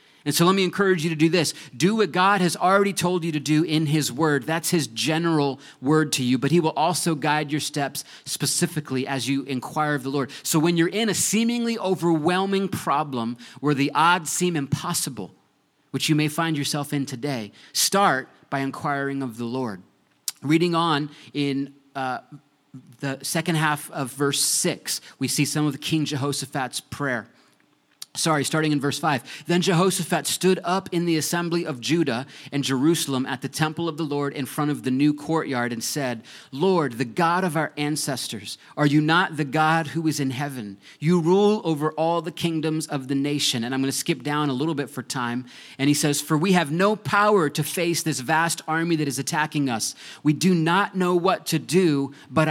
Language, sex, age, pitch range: English, male, 30-49, 140-175 Hz